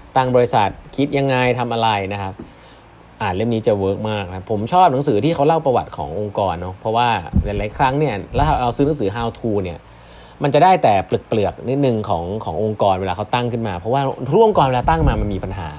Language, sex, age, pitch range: Thai, male, 20-39, 95-125 Hz